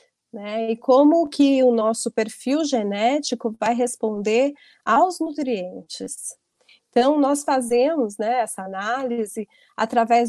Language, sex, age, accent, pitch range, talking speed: Portuguese, female, 30-49, Brazilian, 215-265 Hz, 110 wpm